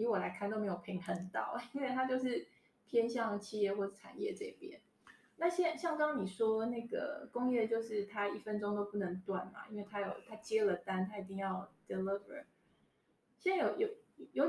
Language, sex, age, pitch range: Chinese, female, 20-39, 195-250 Hz